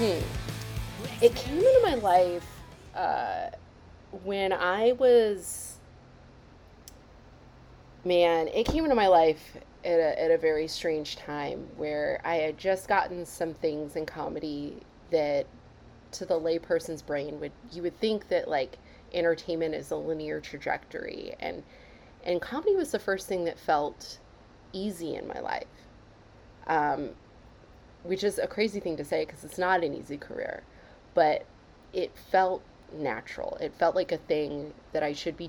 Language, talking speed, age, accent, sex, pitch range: English, 150 wpm, 30-49, American, female, 155-195 Hz